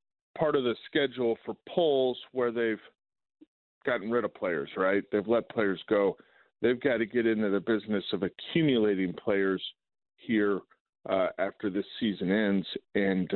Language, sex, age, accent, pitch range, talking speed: English, male, 50-69, American, 100-120 Hz, 155 wpm